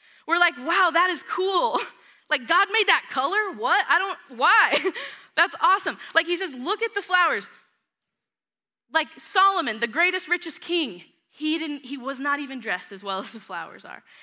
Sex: female